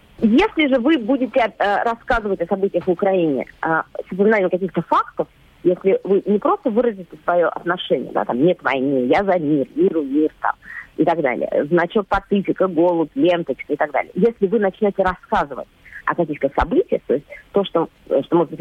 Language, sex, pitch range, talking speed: Russian, female, 165-230 Hz, 170 wpm